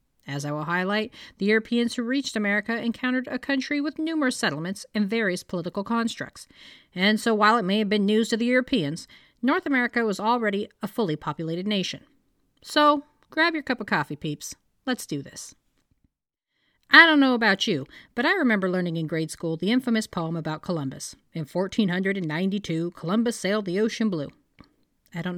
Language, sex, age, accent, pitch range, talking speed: English, female, 40-59, American, 170-245 Hz, 175 wpm